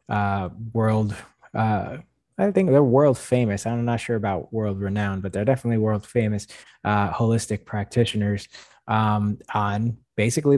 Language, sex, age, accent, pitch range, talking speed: English, male, 20-39, American, 105-120 Hz, 140 wpm